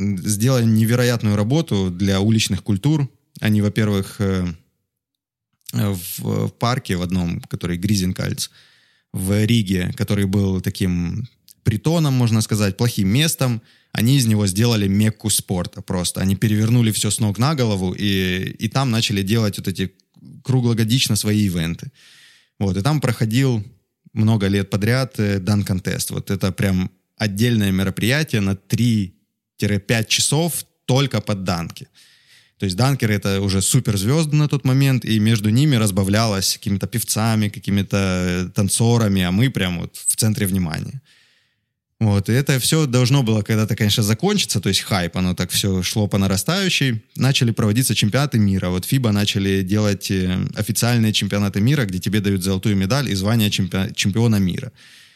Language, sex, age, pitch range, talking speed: English, male, 20-39, 100-125 Hz, 140 wpm